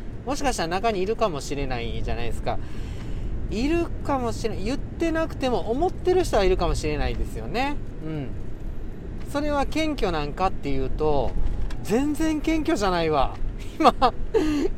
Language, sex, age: Japanese, male, 40-59